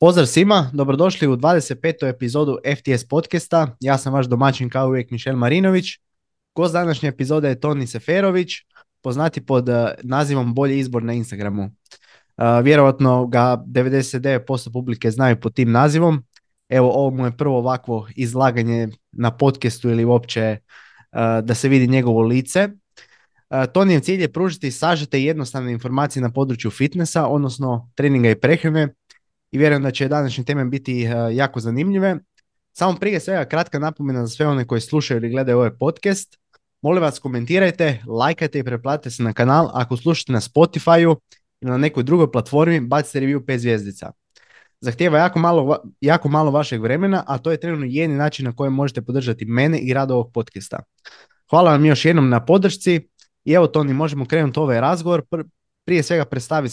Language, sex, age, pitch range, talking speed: Croatian, male, 20-39, 125-160 Hz, 160 wpm